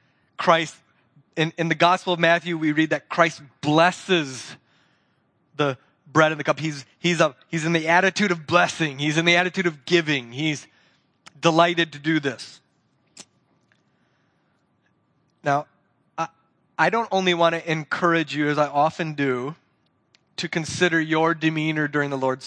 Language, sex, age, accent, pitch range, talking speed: English, male, 30-49, American, 130-165 Hz, 150 wpm